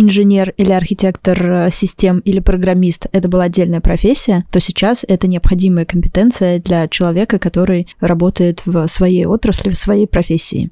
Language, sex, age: Russian, female, 20-39